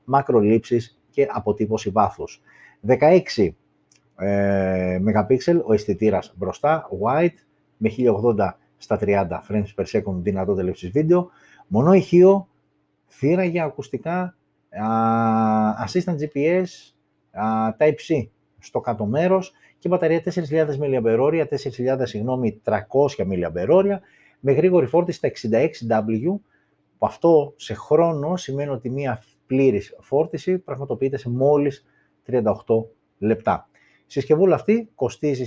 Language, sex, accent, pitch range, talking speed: Greek, male, native, 110-160 Hz, 100 wpm